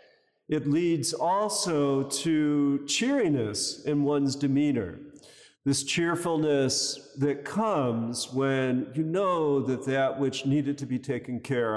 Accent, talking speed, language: American, 115 wpm, English